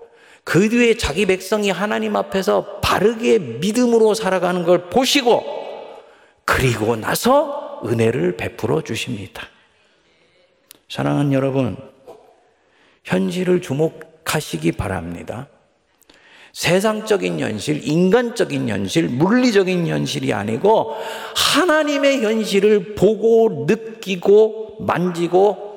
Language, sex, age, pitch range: Korean, male, 50-69, 160-230 Hz